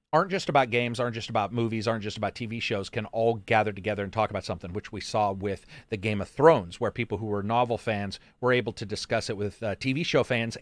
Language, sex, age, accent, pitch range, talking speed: English, male, 40-59, American, 105-130 Hz, 255 wpm